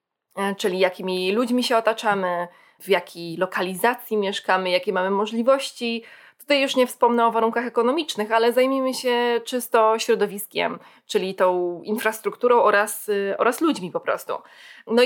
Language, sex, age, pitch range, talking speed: Polish, female, 20-39, 190-235 Hz, 130 wpm